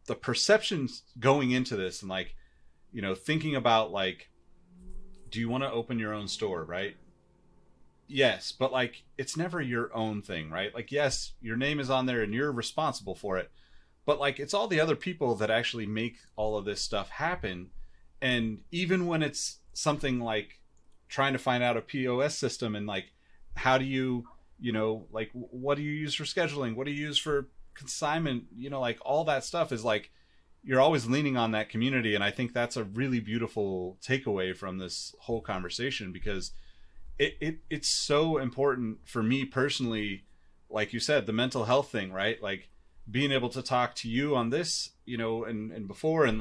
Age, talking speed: 30-49, 190 wpm